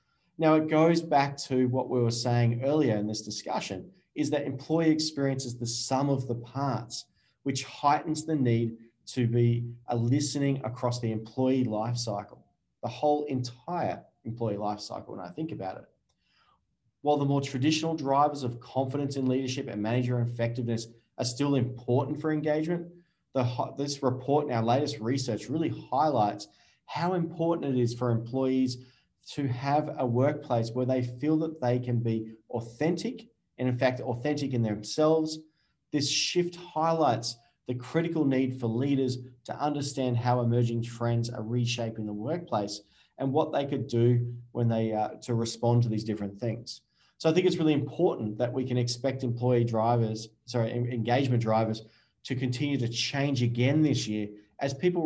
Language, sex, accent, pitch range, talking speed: English, male, Australian, 115-145 Hz, 165 wpm